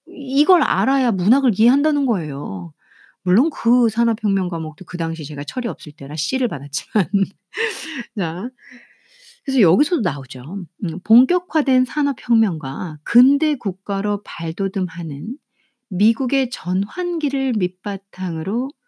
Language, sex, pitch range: Korean, female, 190-275 Hz